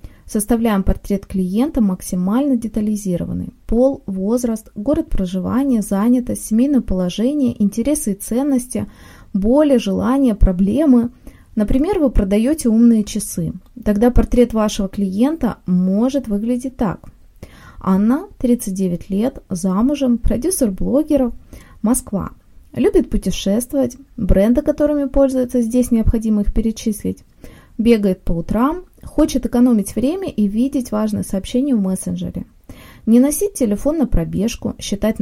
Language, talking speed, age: Russian, 110 wpm, 20-39